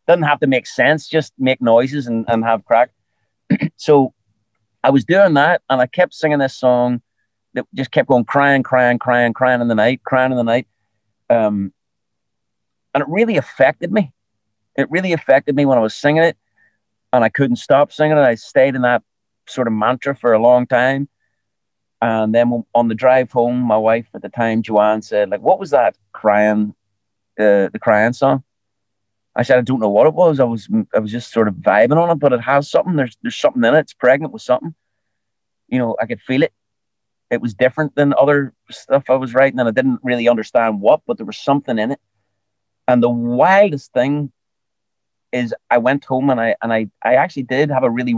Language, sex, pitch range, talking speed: English, male, 105-135 Hz, 210 wpm